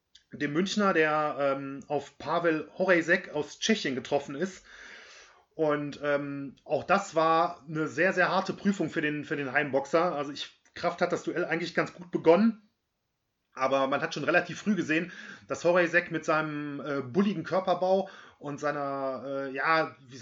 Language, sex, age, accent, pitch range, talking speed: German, male, 30-49, German, 145-180 Hz, 155 wpm